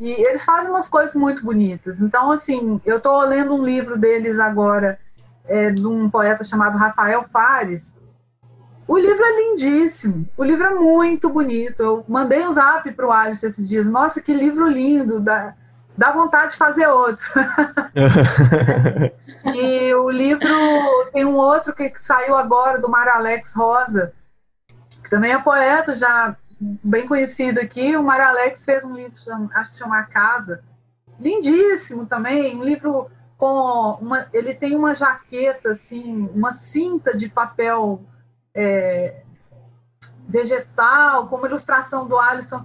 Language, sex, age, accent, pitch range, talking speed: Portuguese, female, 30-49, Brazilian, 210-285 Hz, 150 wpm